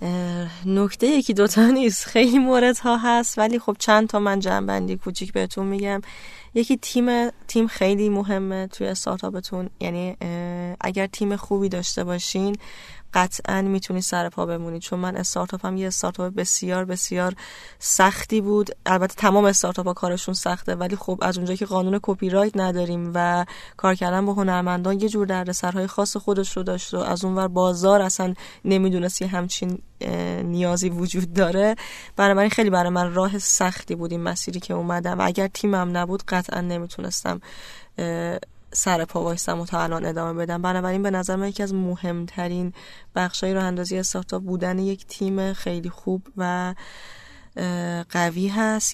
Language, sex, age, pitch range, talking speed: Persian, female, 10-29, 180-205 Hz, 150 wpm